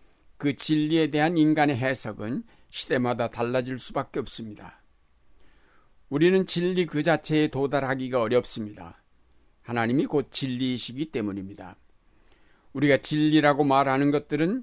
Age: 60-79